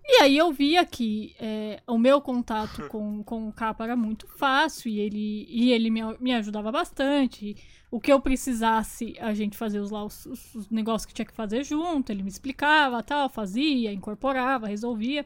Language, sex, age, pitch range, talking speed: English, female, 10-29, 225-295 Hz, 190 wpm